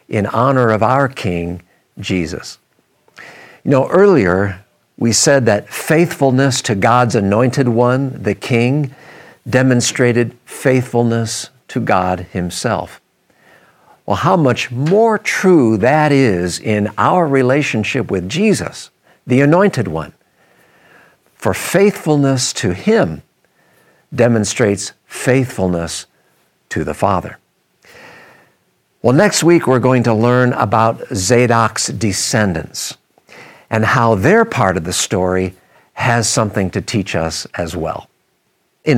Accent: American